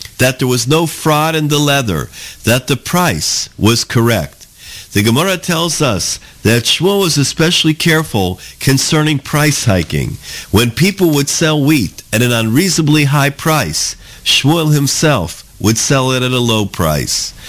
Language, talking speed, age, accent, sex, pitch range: English, 150 wpm, 50-69, American, male, 115-155 Hz